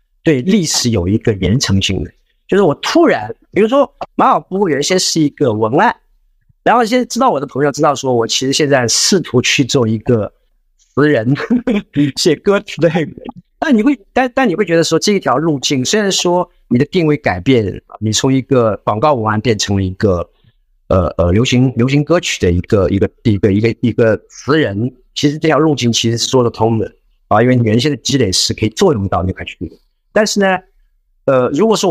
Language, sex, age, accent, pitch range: Chinese, male, 50-69, native, 105-160 Hz